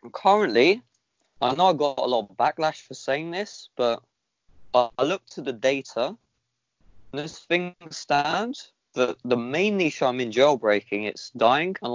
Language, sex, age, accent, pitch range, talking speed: English, male, 20-39, British, 125-170 Hz, 155 wpm